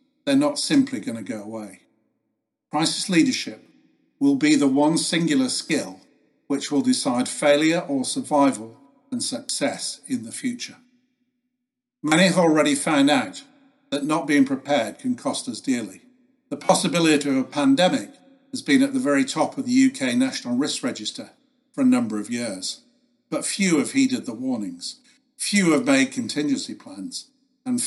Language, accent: English, British